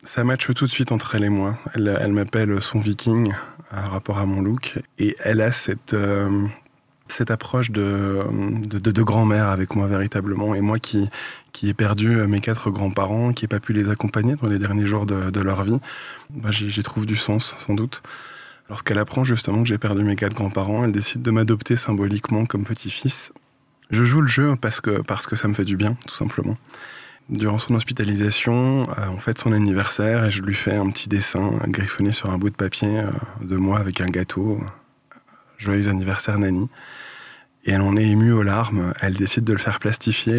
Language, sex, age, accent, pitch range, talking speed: French, male, 20-39, French, 100-115 Hz, 205 wpm